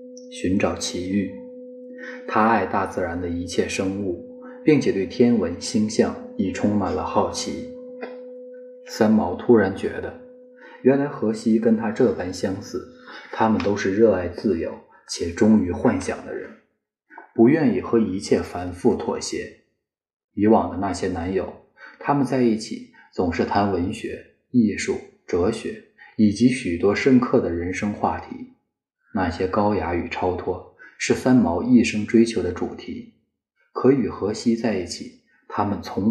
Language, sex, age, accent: Chinese, male, 20-39, native